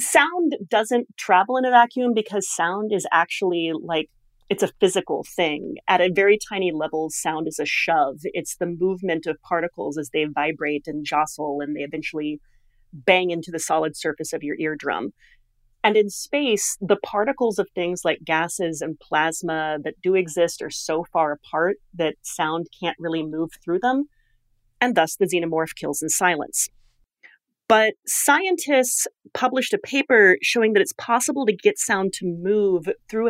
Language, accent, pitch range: English, American, 160-215 Hz